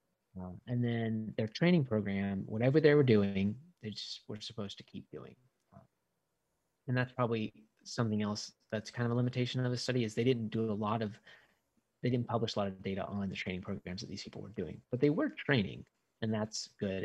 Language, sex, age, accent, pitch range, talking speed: English, male, 30-49, American, 105-125 Hz, 215 wpm